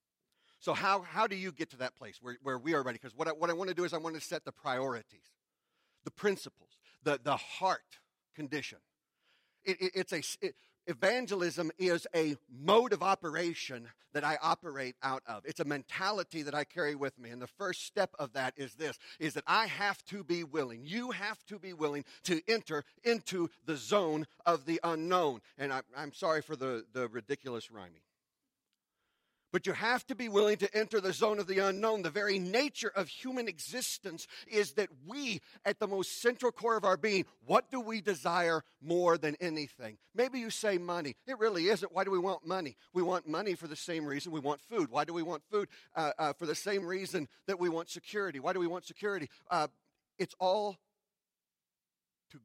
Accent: American